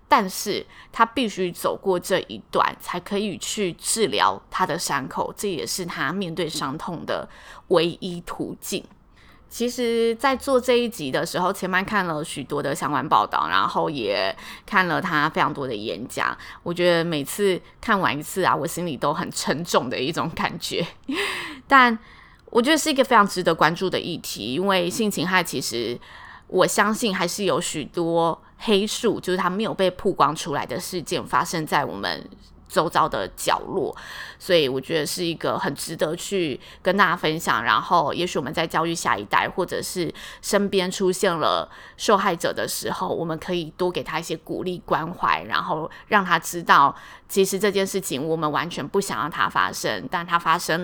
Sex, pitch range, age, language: female, 165-200 Hz, 20-39, Chinese